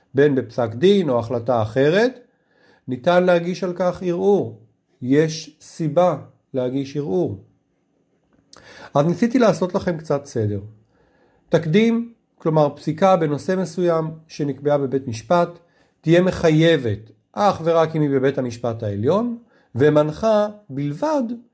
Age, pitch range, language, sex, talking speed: 40-59, 140-190 Hz, Hebrew, male, 110 wpm